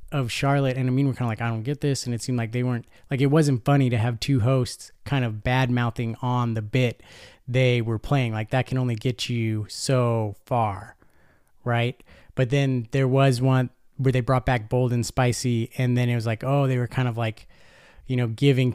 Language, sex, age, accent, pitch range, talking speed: English, male, 30-49, American, 115-140 Hz, 230 wpm